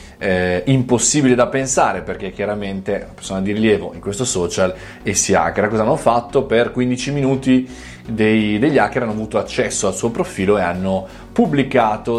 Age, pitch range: 20-39, 95-120 Hz